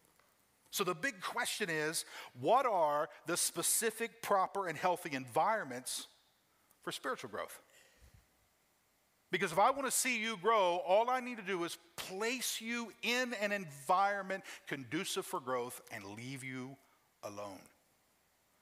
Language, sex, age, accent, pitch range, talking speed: English, male, 50-69, American, 140-195 Hz, 135 wpm